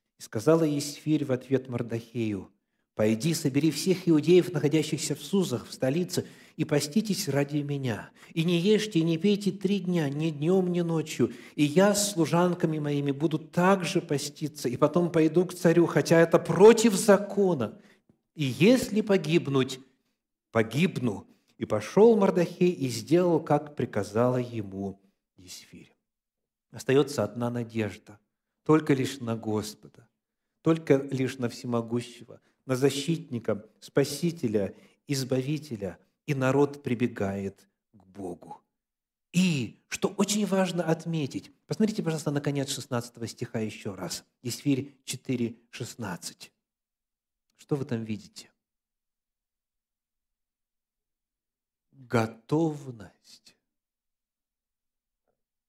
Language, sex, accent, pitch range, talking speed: Russian, male, native, 120-170 Hz, 110 wpm